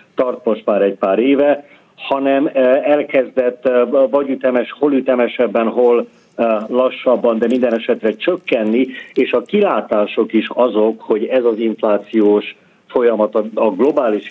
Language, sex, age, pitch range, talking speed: Hungarian, male, 50-69, 105-130 Hz, 125 wpm